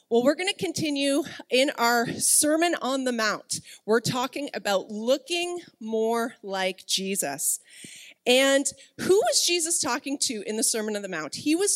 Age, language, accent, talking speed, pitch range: 30-49, English, American, 165 wpm, 210-290 Hz